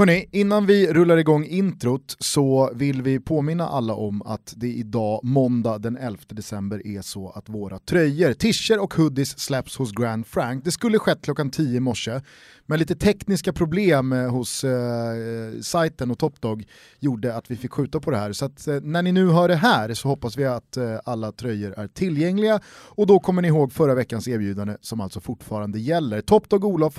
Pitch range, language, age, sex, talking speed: 115-170 Hz, Swedish, 30-49, male, 195 wpm